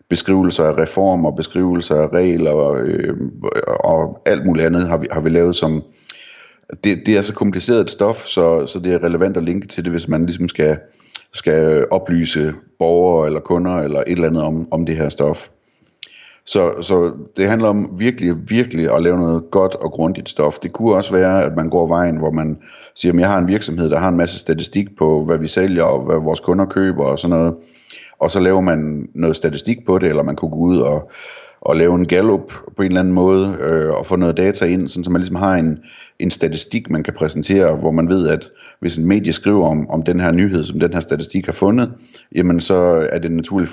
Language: Danish